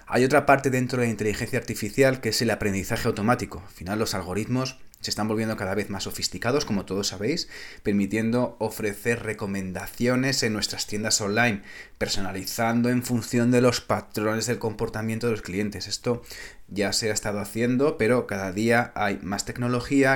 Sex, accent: male, Spanish